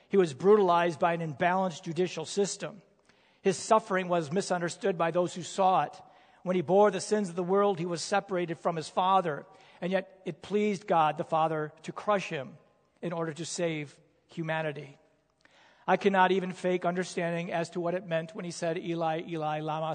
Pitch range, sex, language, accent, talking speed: 165-195 Hz, male, English, American, 185 wpm